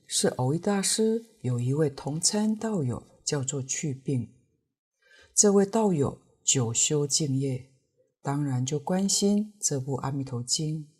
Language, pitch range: Chinese, 135-180 Hz